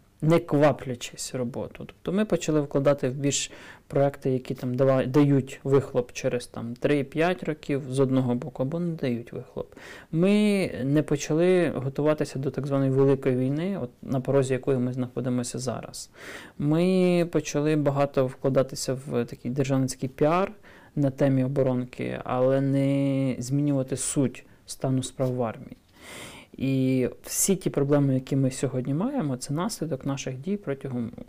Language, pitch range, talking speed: Ukrainian, 130-150 Hz, 140 wpm